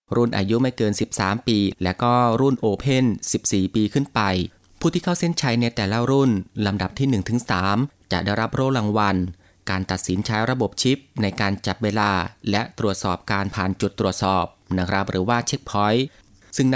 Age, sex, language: 20-39, male, Thai